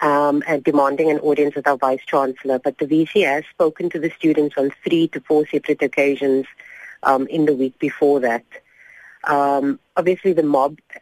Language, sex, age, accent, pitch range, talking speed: English, female, 30-49, Indian, 135-155 Hz, 175 wpm